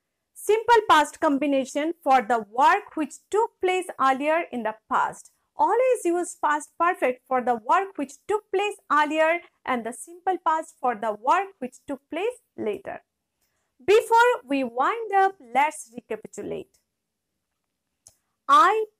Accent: Indian